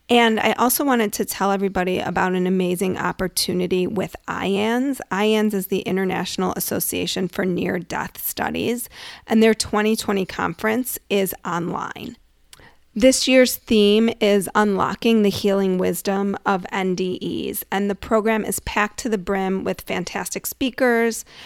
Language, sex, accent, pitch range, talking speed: English, female, American, 190-220 Hz, 135 wpm